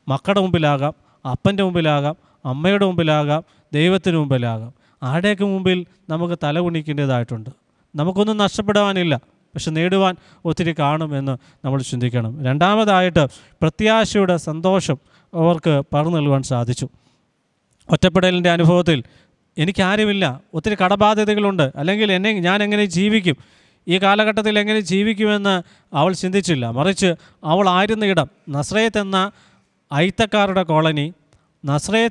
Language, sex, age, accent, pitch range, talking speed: Malayalam, male, 20-39, native, 150-195 Hz, 100 wpm